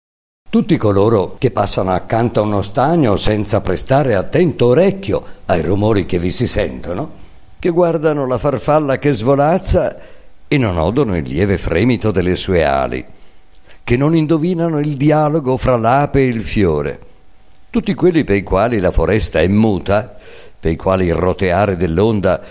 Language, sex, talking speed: Italian, male, 155 wpm